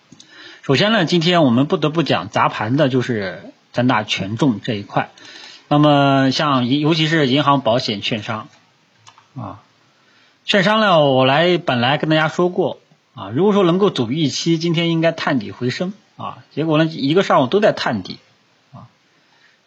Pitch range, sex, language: 125-150 Hz, male, Chinese